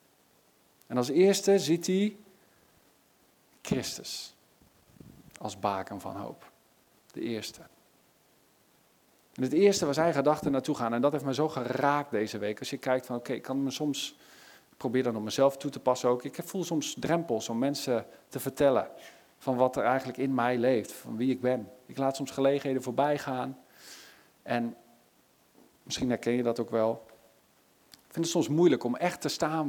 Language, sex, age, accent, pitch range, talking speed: Dutch, male, 50-69, Dutch, 125-155 Hz, 180 wpm